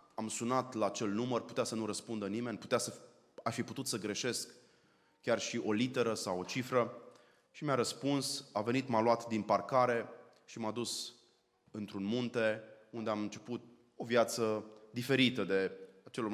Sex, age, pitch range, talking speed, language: male, 20-39, 105-125 Hz, 160 wpm, Romanian